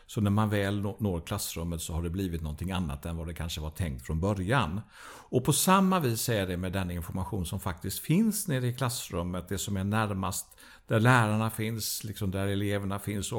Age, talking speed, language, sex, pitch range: 50-69, 210 wpm, Swedish, male, 95-125 Hz